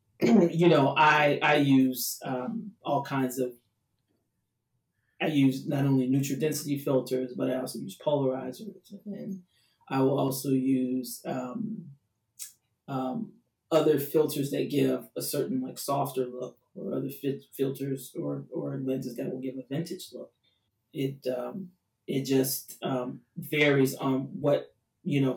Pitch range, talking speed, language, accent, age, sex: 125-140 Hz, 140 wpm, English, American, 30-49, male